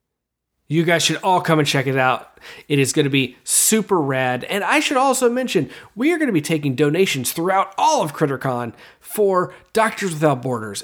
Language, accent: English, American